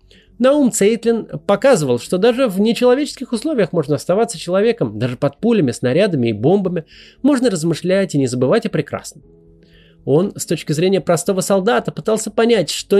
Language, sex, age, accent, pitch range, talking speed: Russian, male, 30-49, native, 150-225 Hz, 150 wpm